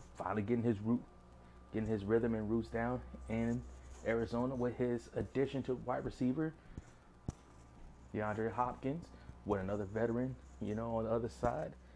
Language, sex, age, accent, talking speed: English, male, 20-39, American, 145 wpm